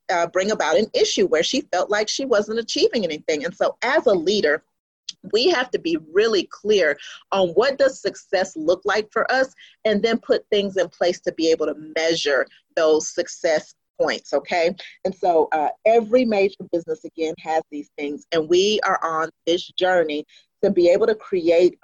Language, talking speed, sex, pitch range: English, 185 wpm, female, 160-225 Hz